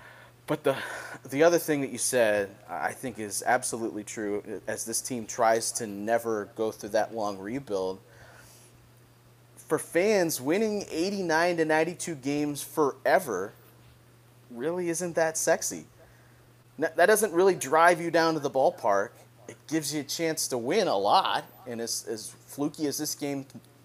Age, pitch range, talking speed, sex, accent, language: 30-49, 125-165 Hz, 155 wpm, male, American, English